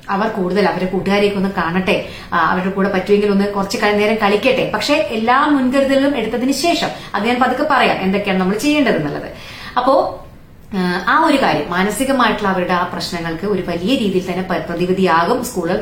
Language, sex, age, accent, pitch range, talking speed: Malayalam, female, 30-49, native, 185-240 Hz, 140 wpm